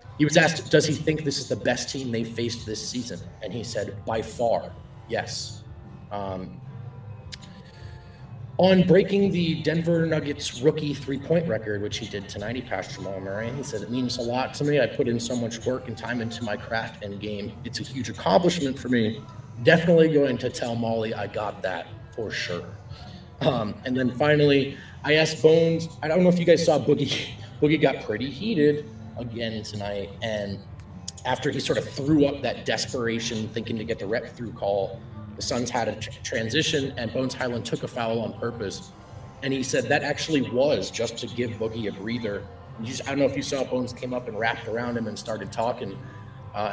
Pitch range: 110-140 Hz